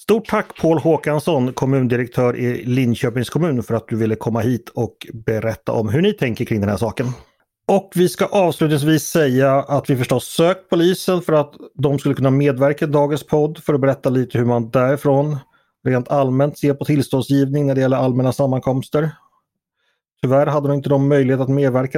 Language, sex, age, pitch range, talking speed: Swedish, male, 30-49, 120-155 Hz, 185 wpm